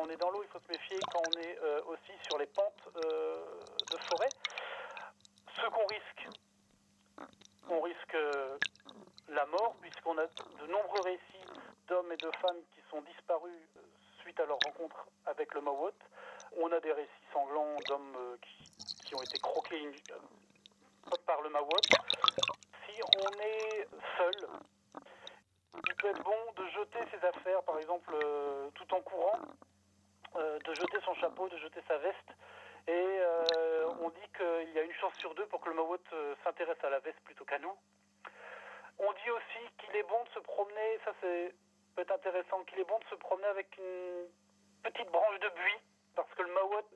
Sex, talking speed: male, 185 wpm